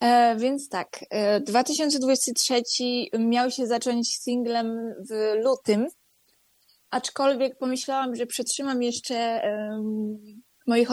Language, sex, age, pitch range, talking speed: Polish, female, 20-39, 225-260 Hz, 80 wpm